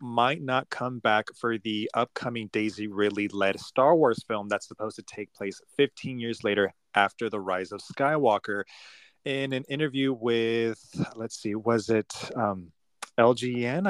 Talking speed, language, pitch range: 150 wpm, English, 105-125 Hz